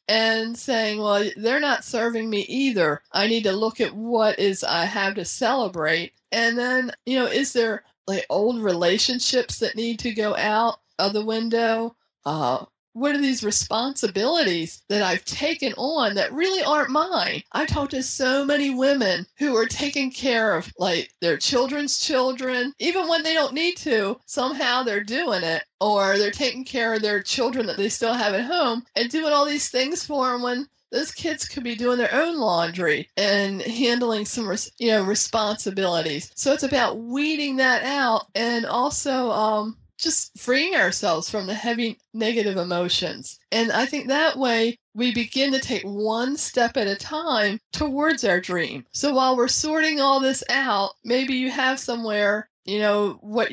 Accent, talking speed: American, 175 wpm